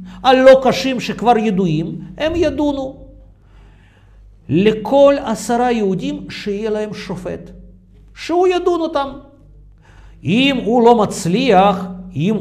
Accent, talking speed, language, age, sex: native, 90 wpm, Russian, 50-69, male